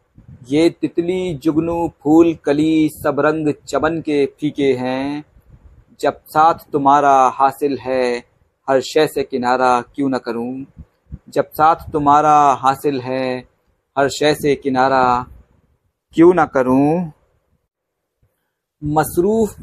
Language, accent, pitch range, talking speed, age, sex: Hindi, native, 135-165 Hz, 110 wpm, 50-69, male